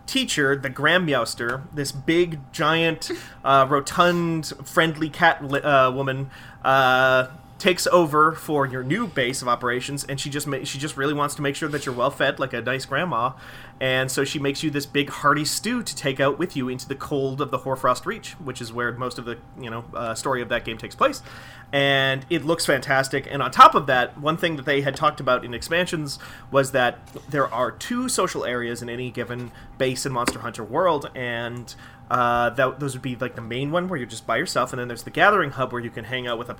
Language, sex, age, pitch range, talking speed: English, male, 30-49, 130-155 Hz, 225 wpm